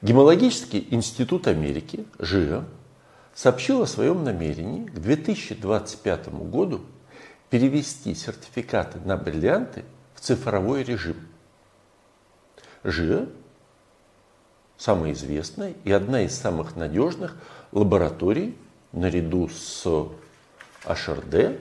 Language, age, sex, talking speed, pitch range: Russian, 50-69, male, 85 wpm, 90-145 Hz